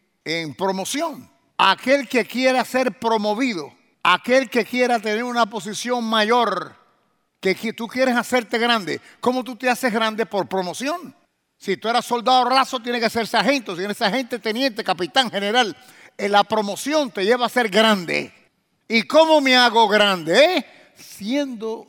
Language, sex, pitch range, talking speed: English, male, 195-255 Hz, 150 wpm